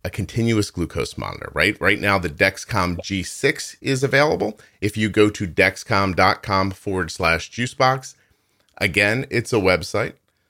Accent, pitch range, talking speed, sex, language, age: American, 90-110 Hz, 135 wpm, male, English, 40-59